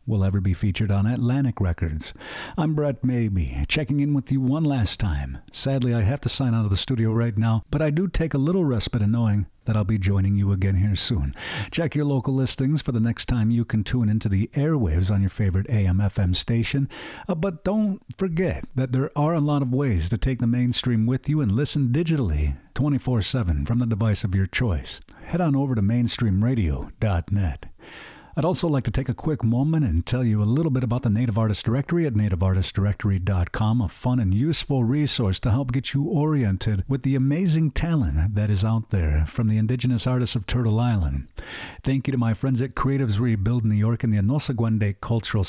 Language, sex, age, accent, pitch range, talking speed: English, male, 50-69, American, 100-135 Hz, 205 wpm